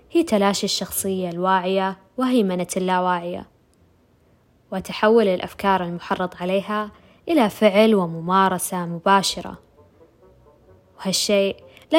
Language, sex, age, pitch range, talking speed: Arabic, female, 20-39, 180-200 Hz, 85 wpm